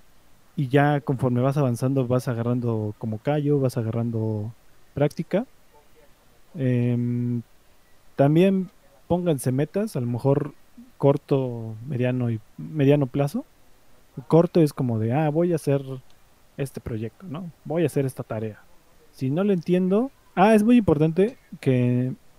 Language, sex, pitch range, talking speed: Spanish, male, 125-155 Hz, 130 wpm